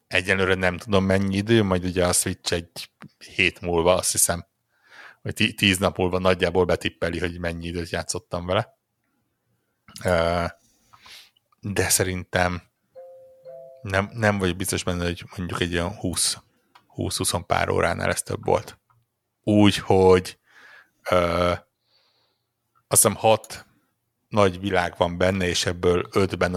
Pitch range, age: 90-105 Hz, 60-79